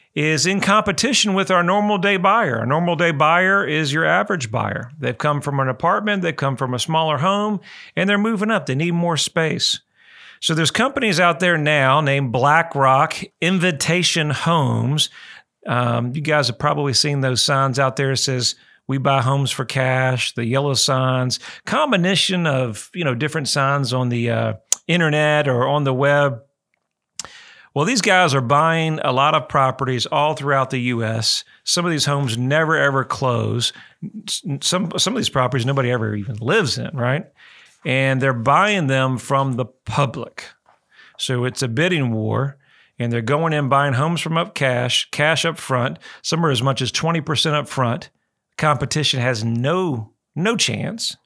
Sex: male